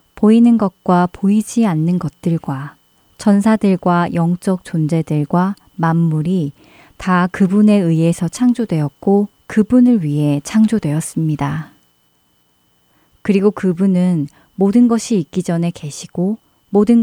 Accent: native